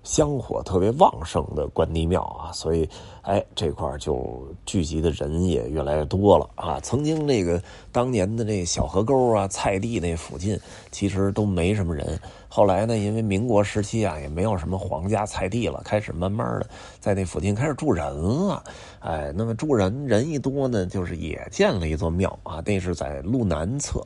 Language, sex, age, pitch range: Chinese, male, 30-49, 85-110 Hz